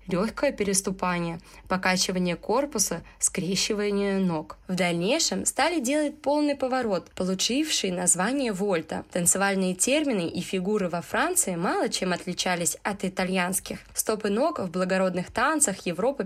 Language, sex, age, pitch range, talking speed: Russian, female, 20-39, 180-250 Hz, 120 wpm